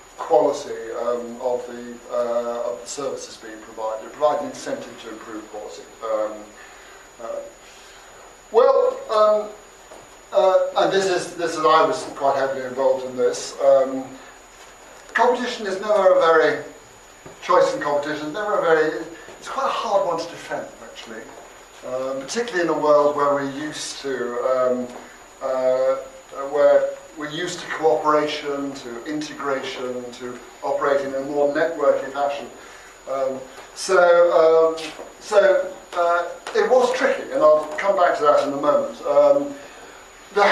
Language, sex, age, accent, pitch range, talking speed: English, male, 50-69, British, 135-195 Hz, 145 wpm